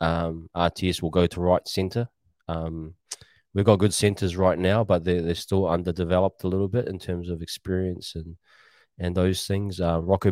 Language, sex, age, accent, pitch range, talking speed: English, male, 20-39, Australian, 85-95 Hz, 185 wpm